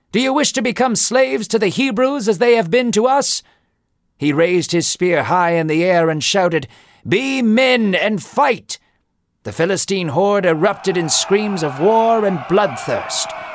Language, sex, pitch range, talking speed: English, male, 155-210 Hz, 175 wpm